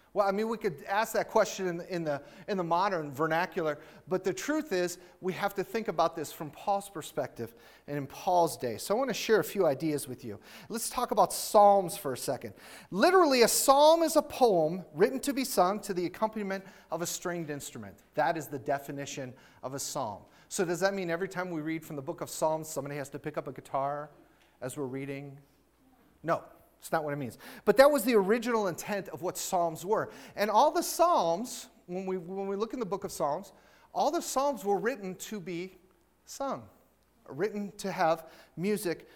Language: English